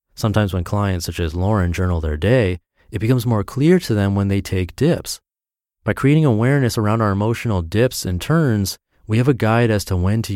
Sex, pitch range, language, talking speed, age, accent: male, 90-115 Hz, English, 210 wpm, 30-49, American